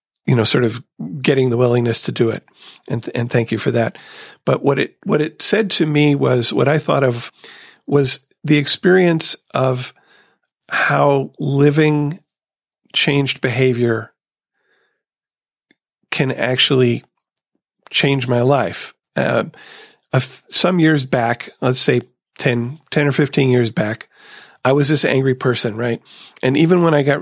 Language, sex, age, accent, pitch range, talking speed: English, male, 40-59, American, 120-145 Hz, 150 wpm